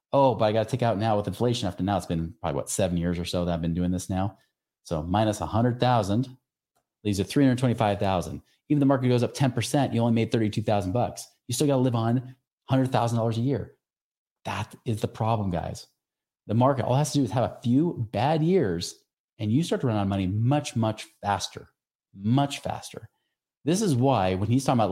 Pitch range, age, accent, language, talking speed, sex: 105-135 Hz, 30-49, American, English, 215 wpm, male